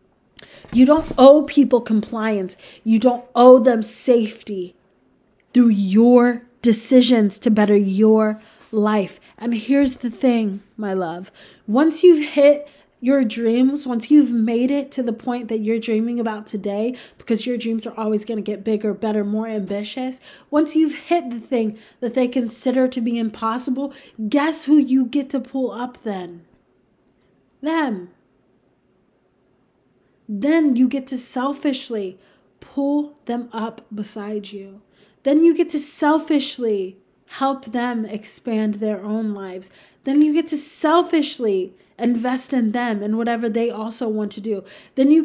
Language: English